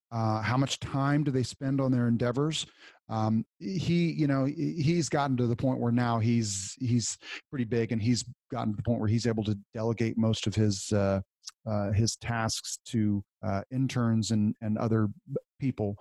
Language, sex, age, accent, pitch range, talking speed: English, male, 40-59, American, 110-125 Hz, 185 wpm